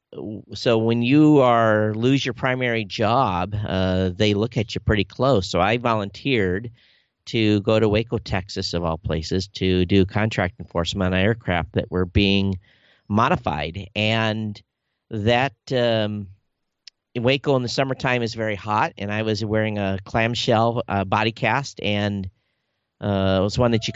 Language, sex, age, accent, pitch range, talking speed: English, male, 50-69, American, 100-125 Hz, 160 wpm